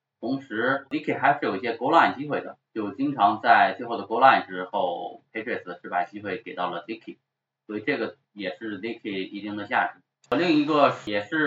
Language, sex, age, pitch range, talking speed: English, male, 20-39, 95-125 Hz, 65 wpm